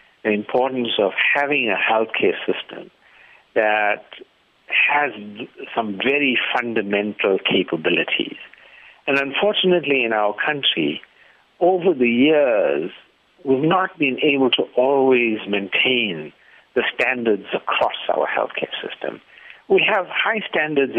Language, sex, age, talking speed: English, male, 60-79, 110 wpm